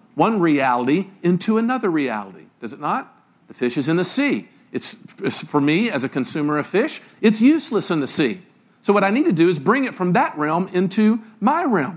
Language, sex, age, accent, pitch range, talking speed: English, male, 50-69, American, 180-235 Hz, 210 wpm